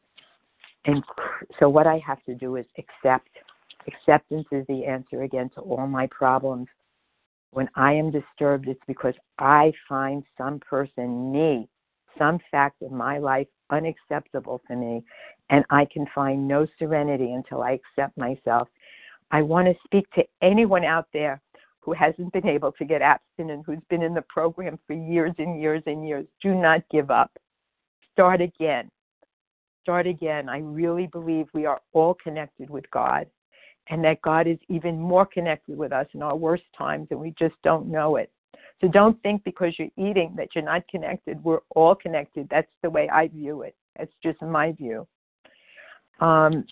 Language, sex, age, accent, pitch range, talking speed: English, female, 60-79, American, 140-165 Hz, 170 wpm